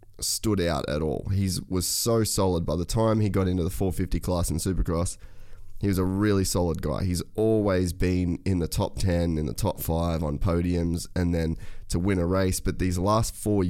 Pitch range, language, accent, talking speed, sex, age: 85-100 Hz, English, Australian, 210 wpm, male, 20-39